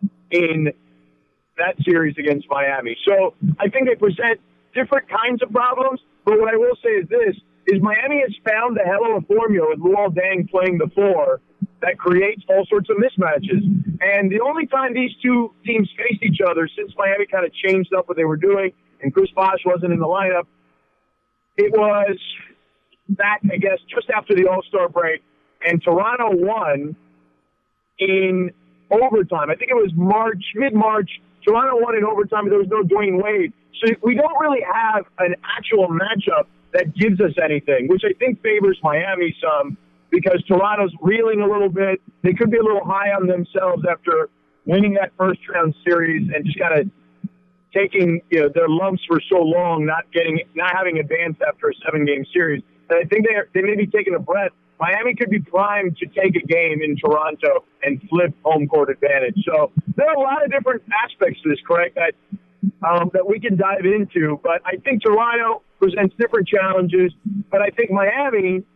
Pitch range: 175-220 Hz